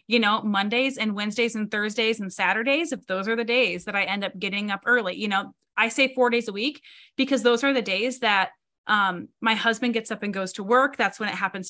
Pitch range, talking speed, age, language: 195-255 Hz, 245 wpm, 20-39, English